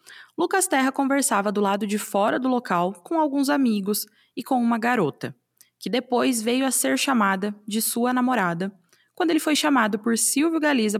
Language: Portuguese